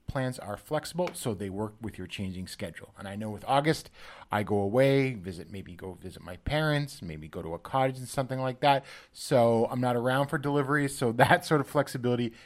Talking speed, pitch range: 210 wpm, 100-140 Hz